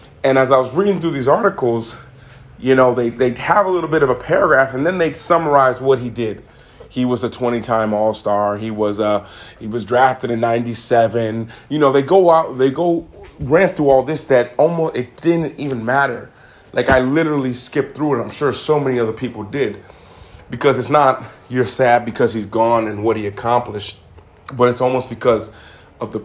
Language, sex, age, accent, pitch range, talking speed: English, male, 30-49, American, 105-130 Hz, 190 wpm